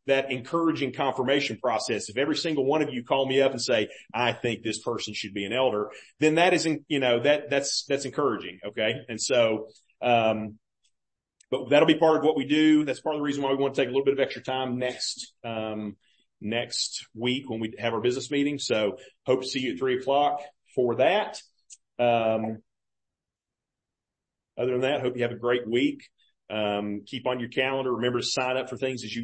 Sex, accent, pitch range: male, American, 110-140 Hz